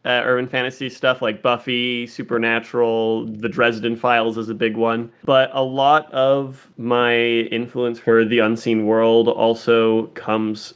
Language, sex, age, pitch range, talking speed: English, male, 20-39, 115-130 Hz, 145 wpm